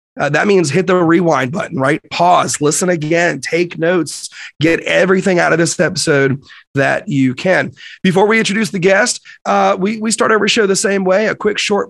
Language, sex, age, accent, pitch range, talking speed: English, male, 30-49, American, 150-190 Hz, 195 wpm